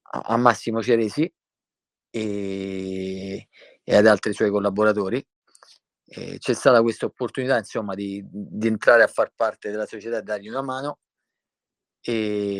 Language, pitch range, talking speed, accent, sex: Italian, 105-120 Hz, 135 wpm, native, male